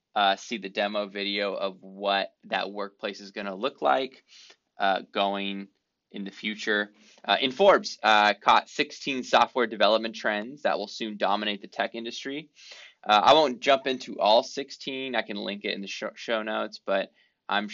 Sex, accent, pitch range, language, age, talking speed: male, American, 95-110 Hz, English, 20-39, 175 wpm